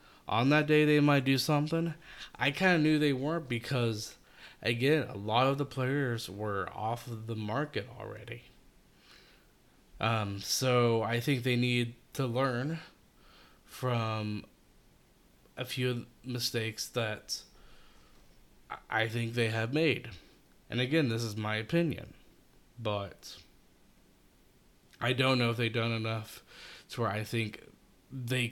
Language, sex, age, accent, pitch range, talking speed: English, male, 20-39, American, 110-130 Hz, 130 wpm